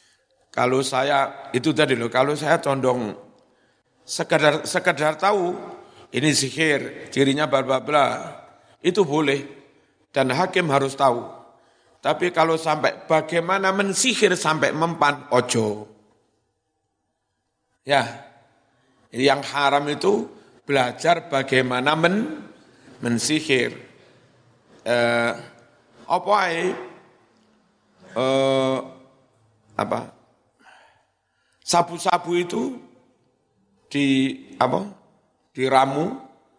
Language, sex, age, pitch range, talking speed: Indonesian, male, 50-69, 130-160 Hz, 75 wpm